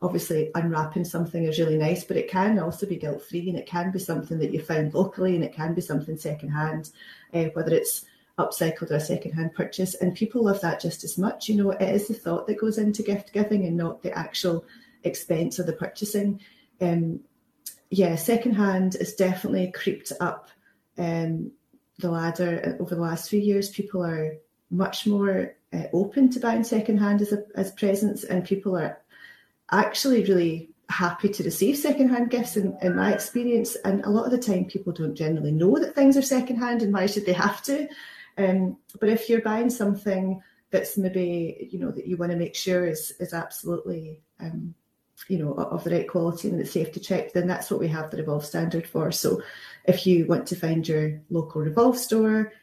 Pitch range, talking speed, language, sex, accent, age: 165-210 Hz, 200 wpm, English, female, British, 30-49